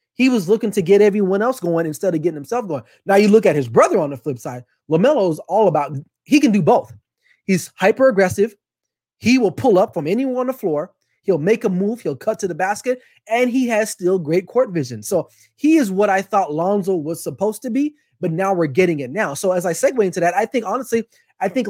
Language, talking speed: English, 240 wpm